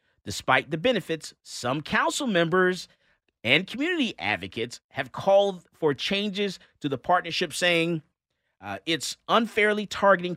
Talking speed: 120 wpm